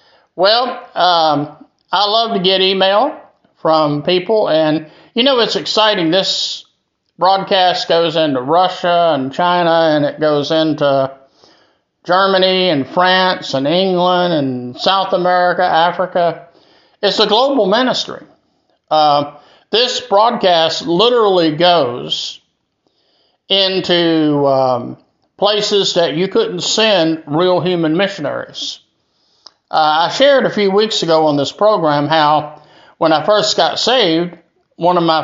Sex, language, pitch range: male, English, 155-190 Hz